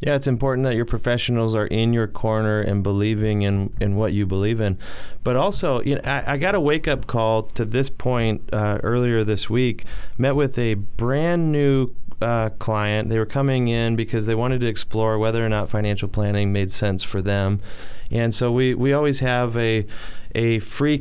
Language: English